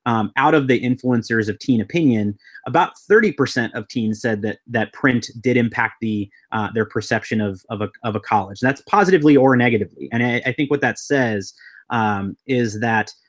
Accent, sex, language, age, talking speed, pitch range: American, male, English, 30-49, 200 wpm, 110-130 Hz